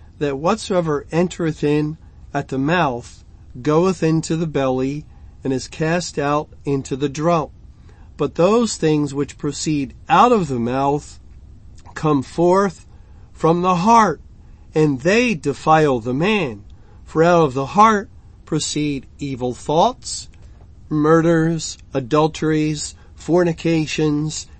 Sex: male